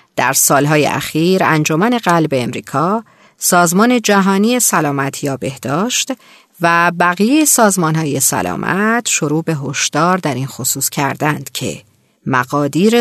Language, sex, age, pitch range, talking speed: Persian, female, 40-59, 150-215 Hz, 115 wpm